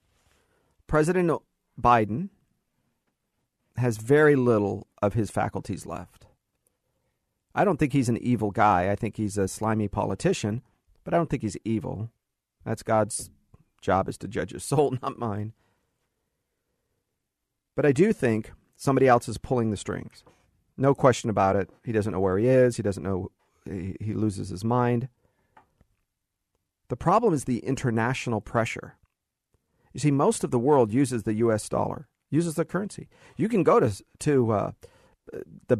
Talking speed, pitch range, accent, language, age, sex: 155 wpm, 105-140 Hz, American, English, 40-59, male